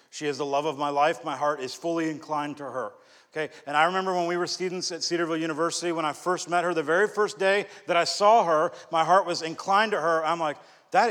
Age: 40-59